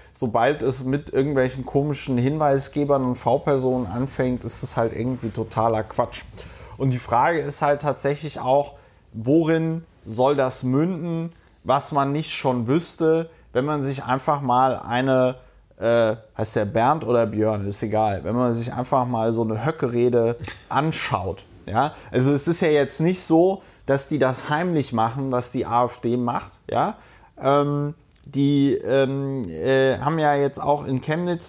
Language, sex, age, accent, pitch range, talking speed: German, male, 30-49, German, 125-150 Hz, 155 wpm